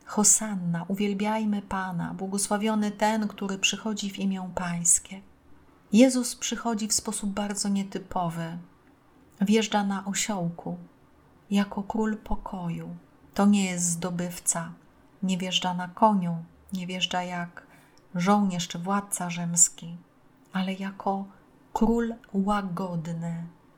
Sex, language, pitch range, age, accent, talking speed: female, Polish, 180-215 Hz, 30-49, native, 105 wpm